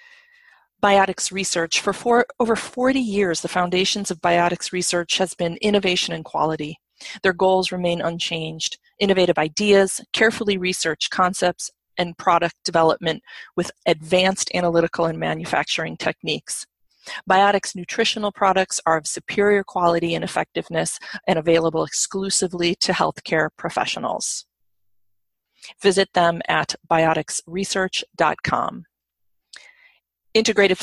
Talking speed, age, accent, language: 105 wpm, 30-49, American, English